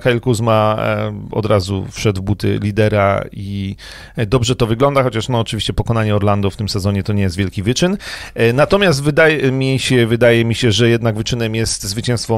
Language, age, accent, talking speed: Polish, 40-59, native, 180 wpm